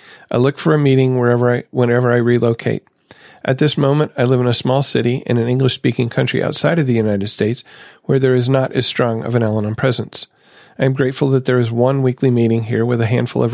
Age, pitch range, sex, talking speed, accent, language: 40-59, 115-130 Hz, male, 230 wpm, American, English